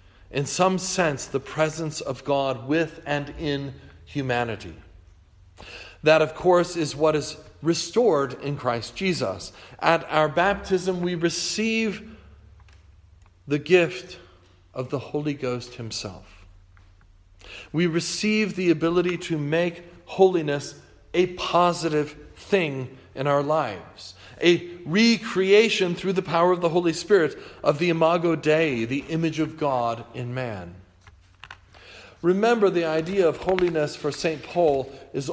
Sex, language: male, English